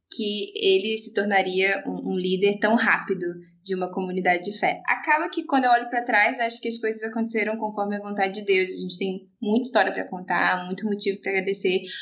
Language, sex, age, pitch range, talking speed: Portuguese, female, 20-39, 195-235 Hz, 205 wpm